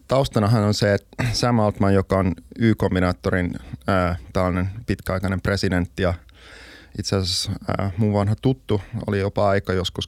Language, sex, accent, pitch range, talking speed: Finnish, male, native, 90-105 Hz, 125 wpm